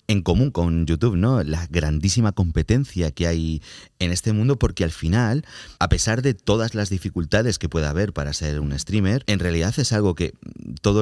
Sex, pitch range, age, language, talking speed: male, 85-110 Hz, 30-49, Spanish, 190 wpm